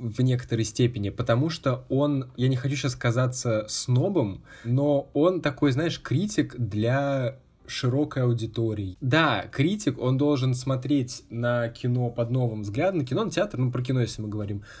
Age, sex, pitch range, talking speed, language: 20-39, male, 120-150 Hz, 160 wpm, Russian